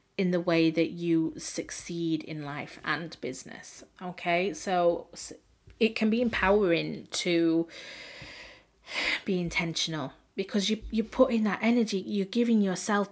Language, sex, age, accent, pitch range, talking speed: English, female, 30-49, British, 165-190 Hz, 135 wpm